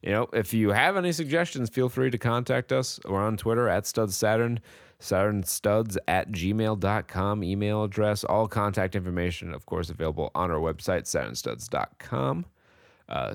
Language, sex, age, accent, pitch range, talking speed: English, male, 30-49, American, 85-115 Hz, 155 wpm